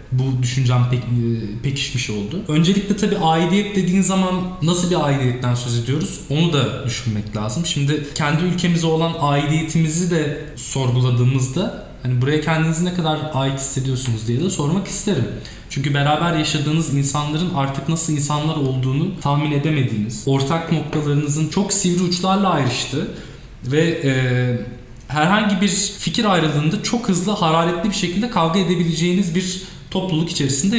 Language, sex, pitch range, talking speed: Turkish, male, 135-180 Hz, 135 wpm